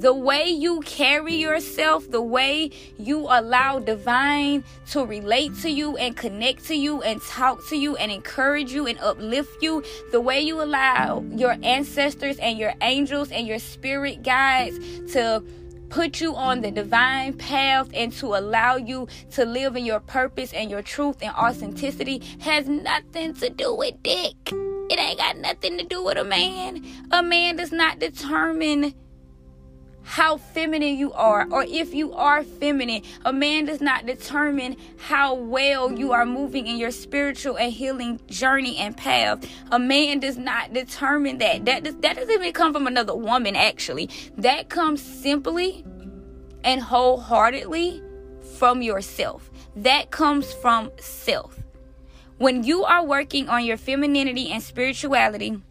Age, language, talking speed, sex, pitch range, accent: 20-39, English, 155 wpm, female, 235-295 Hz, American